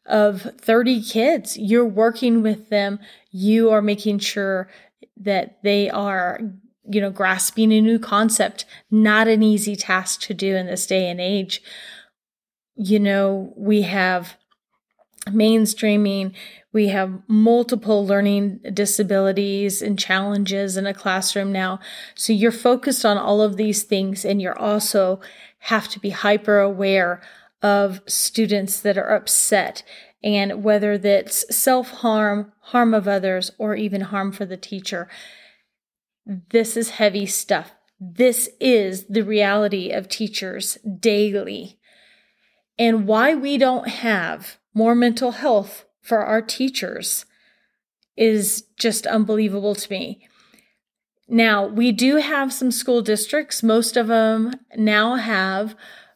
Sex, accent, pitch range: female, American, 200-225 Hz